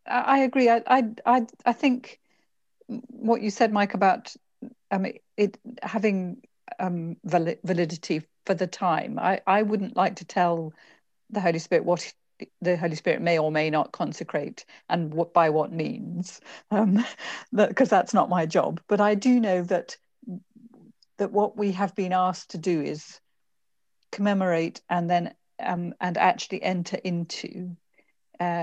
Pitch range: 165-205 Hz